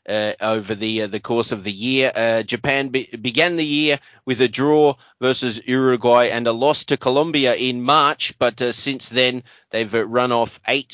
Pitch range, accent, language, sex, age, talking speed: 110-130 Hz, Australian, English, male, 30-49, 195 wpm